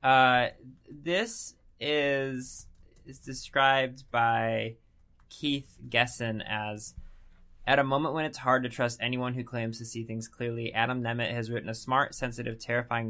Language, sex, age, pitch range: English, male, 20-39, 110-125 Hz